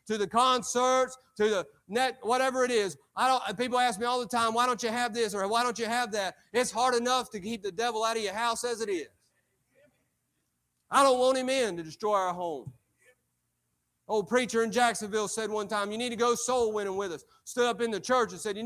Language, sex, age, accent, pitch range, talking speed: English, male, 40-59, American, 205-255 Hz, 240 wpm